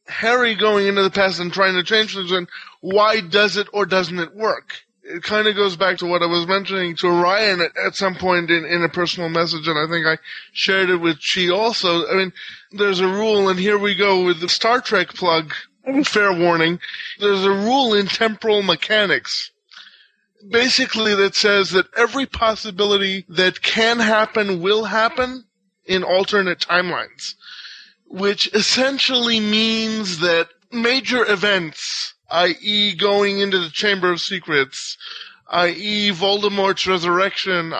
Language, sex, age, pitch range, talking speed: English, male, 20-39, 180-215 Hz, 155 wpm